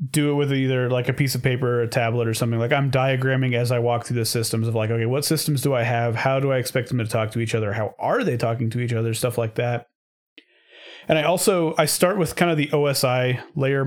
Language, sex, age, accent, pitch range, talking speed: English, male, 30-49, American, 115-145 Hz, 270 wpm